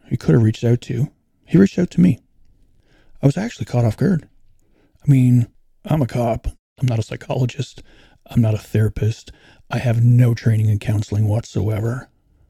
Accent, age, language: American, 40-59, English